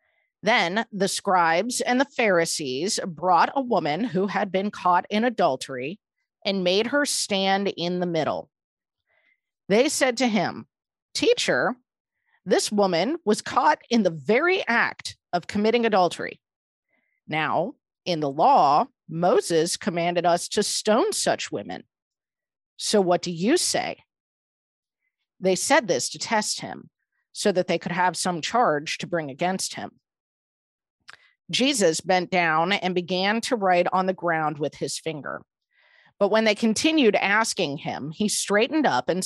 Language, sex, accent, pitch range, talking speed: English, female, American, 175-225 Hz, 145 wpm